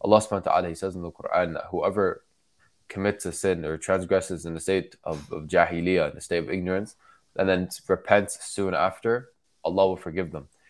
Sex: male